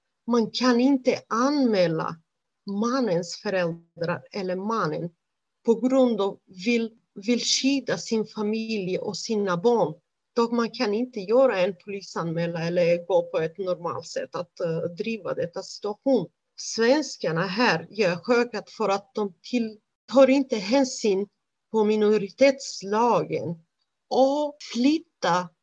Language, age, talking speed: Swedish, 30-49, 120 wpm